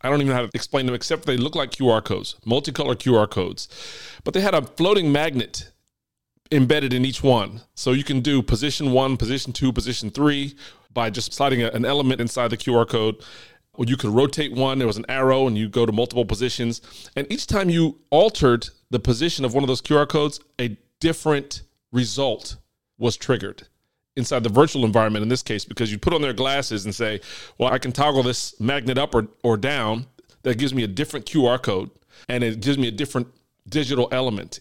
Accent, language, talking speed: American, English, 205 wpm